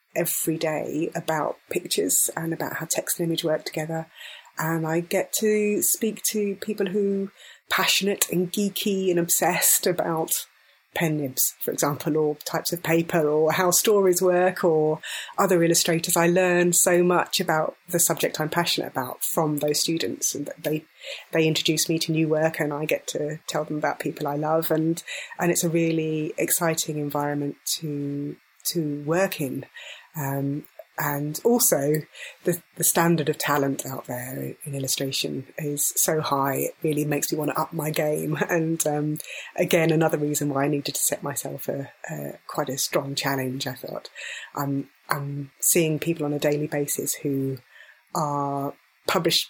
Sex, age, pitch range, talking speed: female, 30-49, 145-170 Hz, 165 wpm